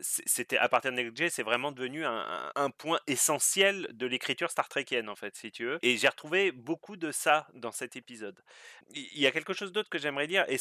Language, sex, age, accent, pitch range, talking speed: French, male, 30-49, French, 125-175 Hz, 220 wpm